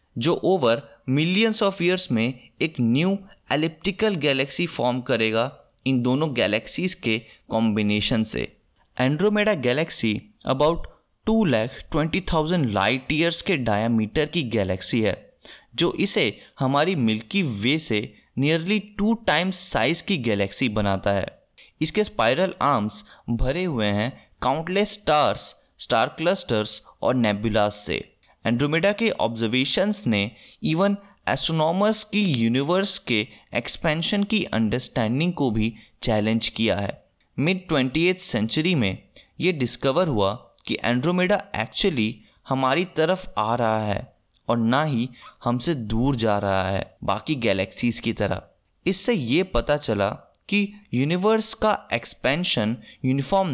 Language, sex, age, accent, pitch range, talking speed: Hindi, male, 20-39, native, 110-180 Hz, 125 wpm